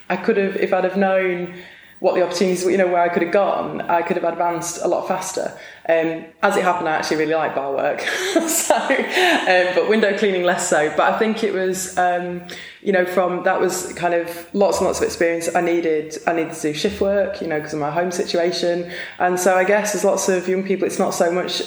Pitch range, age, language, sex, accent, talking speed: 155-185 Hz, 20-39, English, female, British, 245 wpm